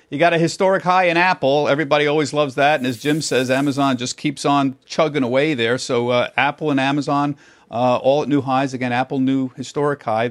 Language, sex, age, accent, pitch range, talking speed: English, male, 50-69, American, 130-165 Hz, 215 wpm